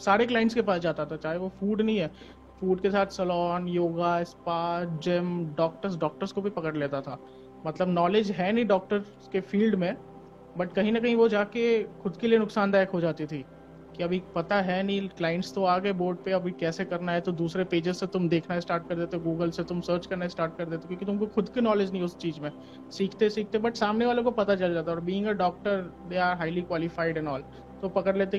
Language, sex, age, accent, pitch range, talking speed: Hindi, male, 30-49, native, 170-205 Hz, 190 wpm